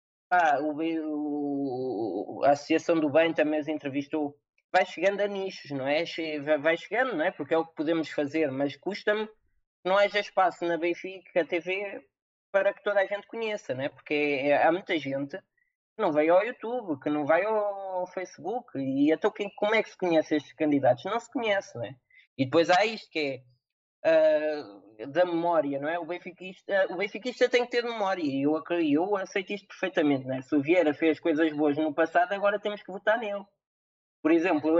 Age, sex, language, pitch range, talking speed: 20-39, male, Portuguese, 155-215 Hz, 205 wpm